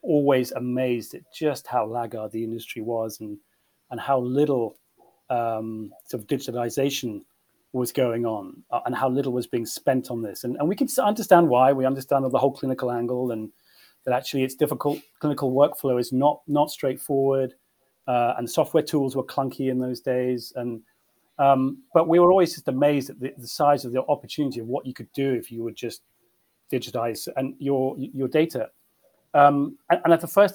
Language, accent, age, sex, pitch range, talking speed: English, British, 30-49, male, 125-145 Hz, 190 wpm